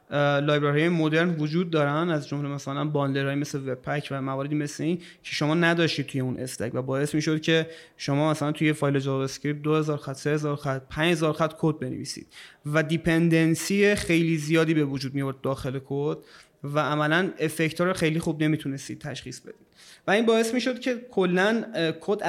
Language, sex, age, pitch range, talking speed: Persian, male, 30-49, 145-175 Hz, 165 wpm